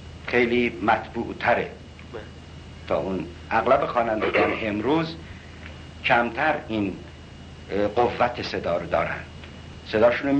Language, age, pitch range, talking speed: Persian, 60-79, 75-115 Hz, 80 wpm